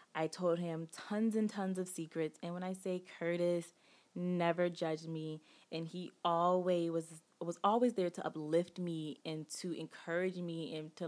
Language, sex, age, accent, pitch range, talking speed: English, female, 20-39, American, 155-180 Hz, 175 wpm